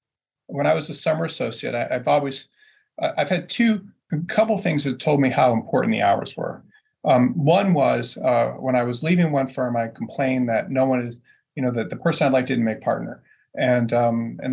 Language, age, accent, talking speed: English, 40-59, American, 220 wpm